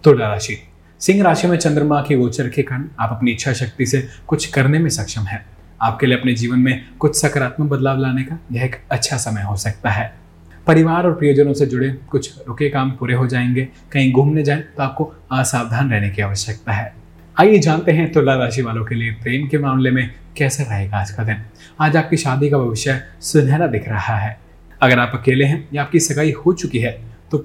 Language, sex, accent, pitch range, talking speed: Hindi, male, native, 110-145 Hz, 210 wpm